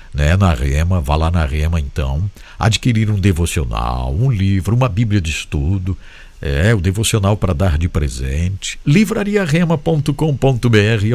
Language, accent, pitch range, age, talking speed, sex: English, Brazilian, 90-130 Hz, 60-79, 135 wpm, male